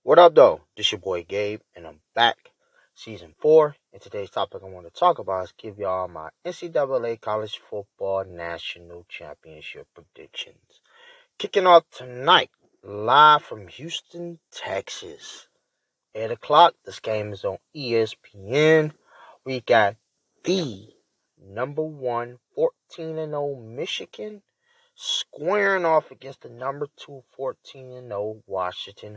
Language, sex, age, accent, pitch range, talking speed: English, male, 30-49, American, 110-175 Hz, 125 wpm